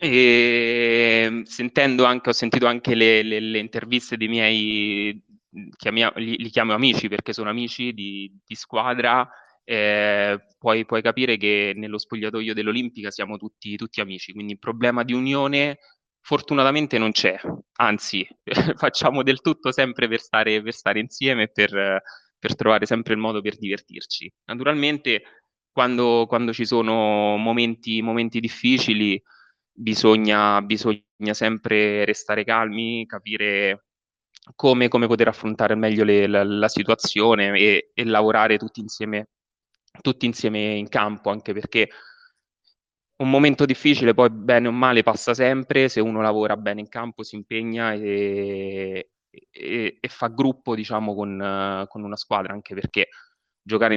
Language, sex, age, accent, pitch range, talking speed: Italian, male, 20-39, native, 105-120 Hz, 135 wpm